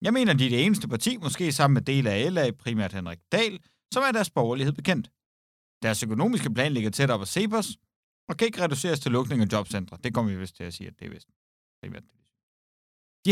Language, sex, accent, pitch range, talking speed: Danish, male, native, 110-180 Hz, 230 wpm